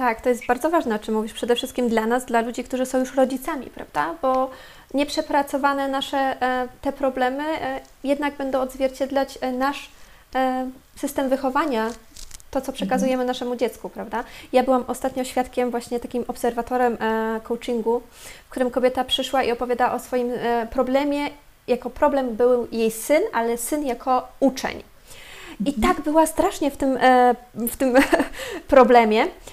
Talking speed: 140 wpm